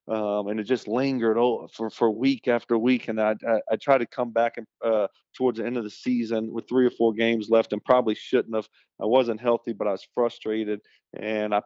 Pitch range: 105-115 Hz